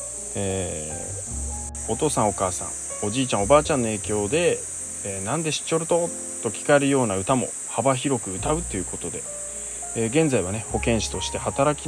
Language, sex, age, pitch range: Japanese, male, 20-39, 90-135 Hz